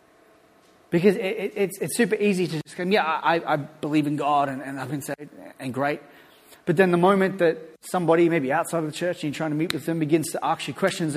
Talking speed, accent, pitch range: 245 wpm, Australian, 145-175 Hz